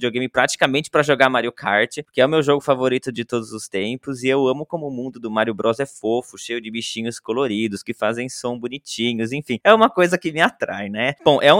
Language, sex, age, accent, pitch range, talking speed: Portuguese, male, 20-39, Brazilian, 115-150 Hz, 245 wpm